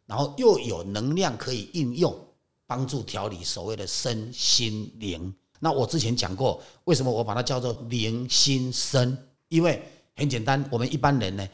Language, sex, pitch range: Chinese, male, 105-145 Hz